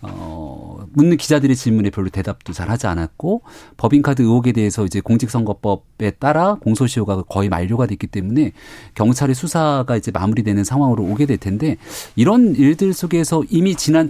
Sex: male